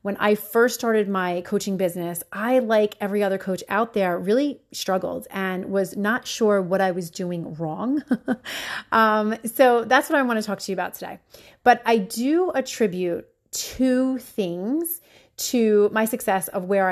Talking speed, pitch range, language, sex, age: 170 wpm, 190-230 Hz, English, female, 30-49